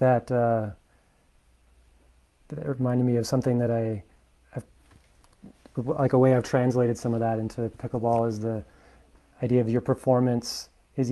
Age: 30-49